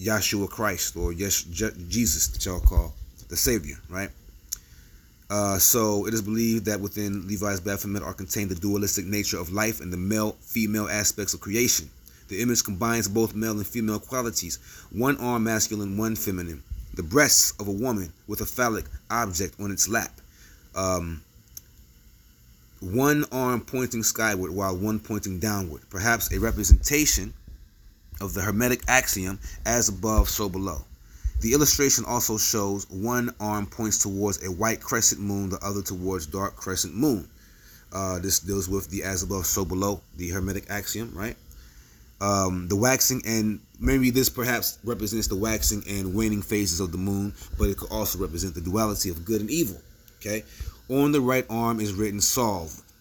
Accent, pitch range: American, 95-110 Hz